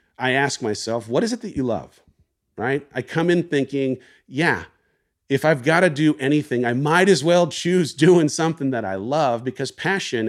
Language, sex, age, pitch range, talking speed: English, male, 40-59, 115-155 Hz, 185 wpm